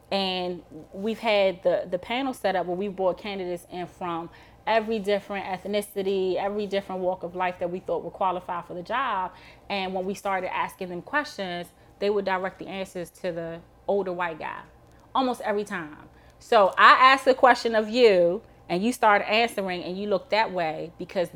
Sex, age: female, 20-39